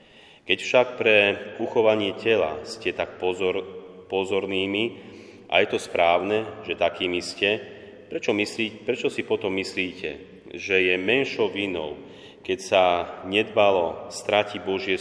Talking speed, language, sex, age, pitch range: 125 wpm, Slovak, male, 30-49, 90-105 Hz